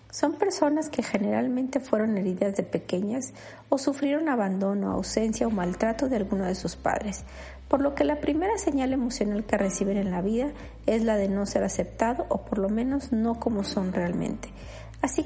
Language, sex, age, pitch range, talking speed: Spanish, female, 40-59, 200-260 Hz, 180 wpm